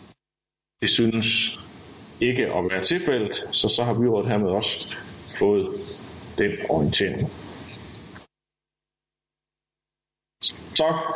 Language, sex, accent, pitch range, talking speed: Danish, male, native, 105-140 Hz, 85 wpm